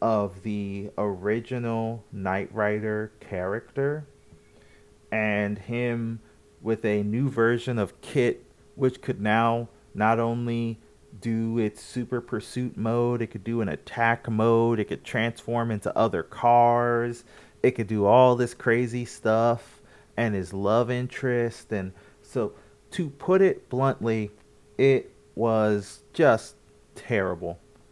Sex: male